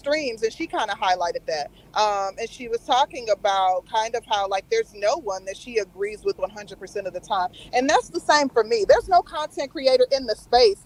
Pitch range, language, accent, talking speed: 260-330 Hz, English, American, 225 wpm